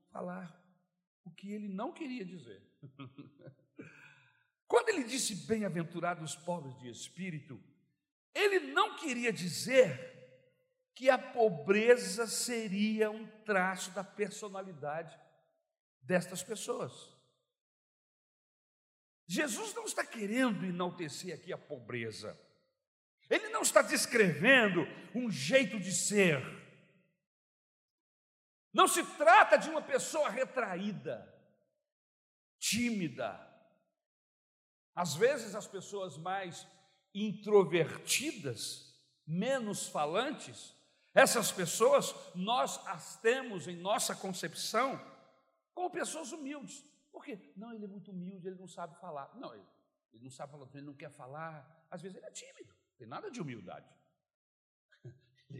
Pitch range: 170-265 Hz